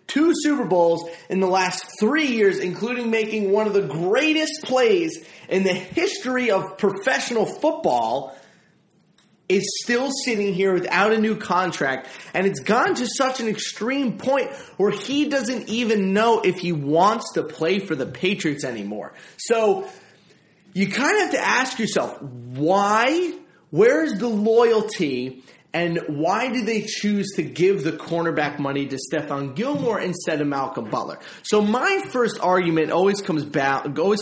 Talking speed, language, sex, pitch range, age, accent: 155 wpm, English, male, 160-230 Hz, 30-49, American